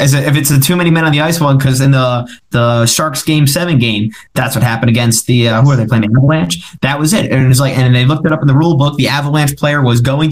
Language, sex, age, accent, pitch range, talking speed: English, male, 20-39, American, 120-140 Hz, 300 wpm